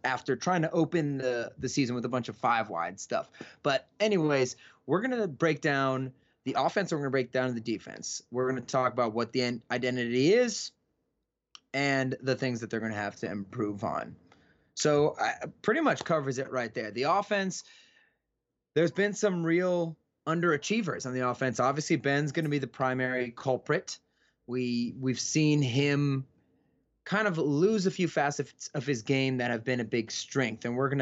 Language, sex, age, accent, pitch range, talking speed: English, male, 20-39, American, 125-160 Hz, 190 wpm